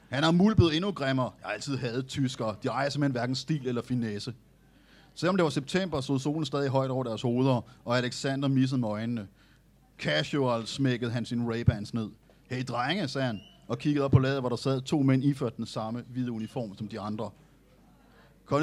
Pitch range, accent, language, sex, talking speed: 120-150 Hz, native, Danish, male, 200 wpm